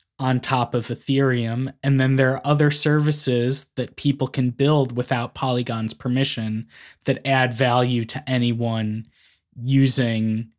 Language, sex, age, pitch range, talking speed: English, male, 20-39, 120-140 Hz, 130 wpm